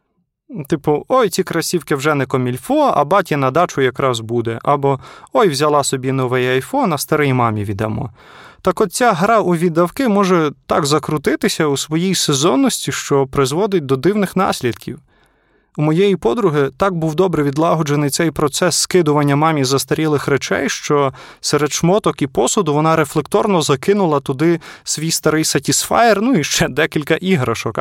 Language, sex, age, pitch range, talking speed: Ukrainian, male, 20-39, 135-185 Hz, 150 wpm